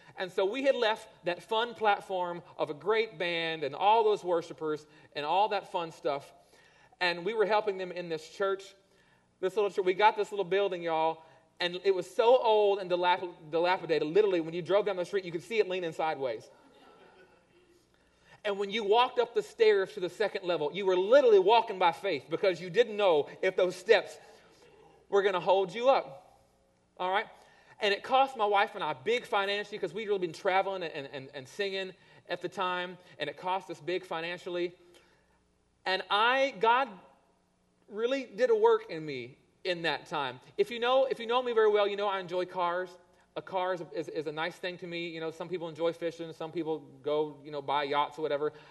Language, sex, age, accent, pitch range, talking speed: English, male, 40-59, American, 160-205 Hz, 205 wpm